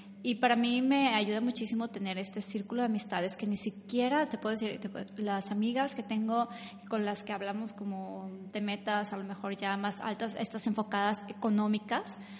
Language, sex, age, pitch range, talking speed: Spanish, female, 20-39, 195-215 Hz, 190 wpm